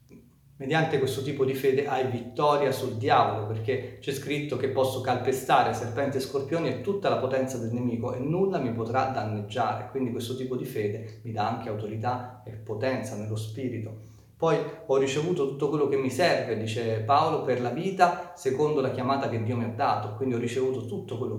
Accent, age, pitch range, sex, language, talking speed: native, 30-49, 115-140 Hz, male, Italian, 190 wpm